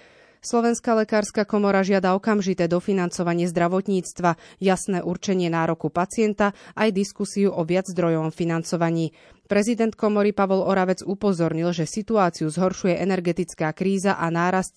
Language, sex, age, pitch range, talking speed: Slovak, female, 20-39, 170-200 Hz, 120 wpm